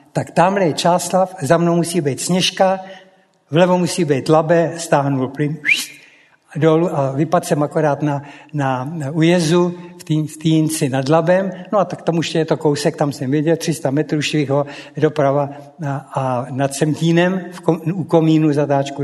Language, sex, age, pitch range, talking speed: Czech, male, 60-79, 150-175 Hz, 165 wpm